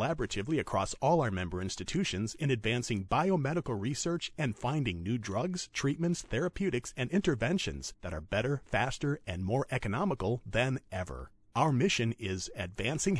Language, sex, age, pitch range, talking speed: English, male, 40-59, 105-160 Hz, 145 wpm